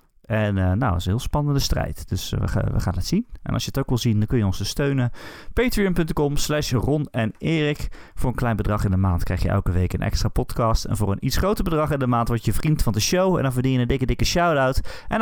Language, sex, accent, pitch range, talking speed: Dutch, male, Dutch, 95-140 Hz, 285 wpm